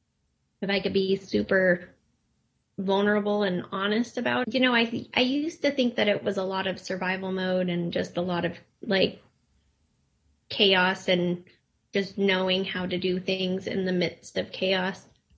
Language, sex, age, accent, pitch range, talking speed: English, female, 20-39, American, 175-200 Hz, 175 wpm